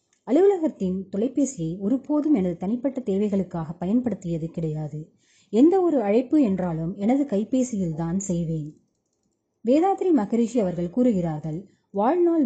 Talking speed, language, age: 90 wpm, Tamil, 20-39